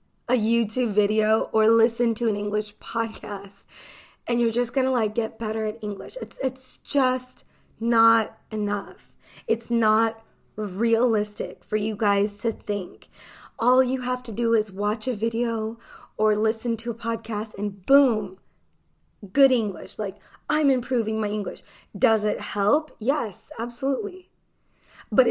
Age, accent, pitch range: 20-39, American, 210-260 Hz